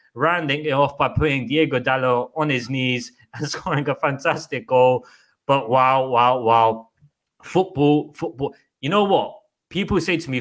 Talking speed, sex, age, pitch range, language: 160 wpm, male, 20-39, 125-155 Hz, English